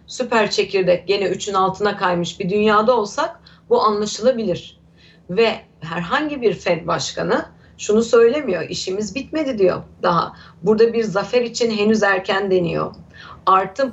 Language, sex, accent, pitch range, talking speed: Turkish, female, native, 185-260 Hz, 130 wpm